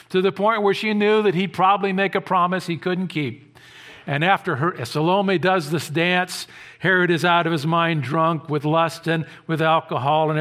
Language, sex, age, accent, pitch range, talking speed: English, male, 50-69, American, 110-165 Hz, 195 wpm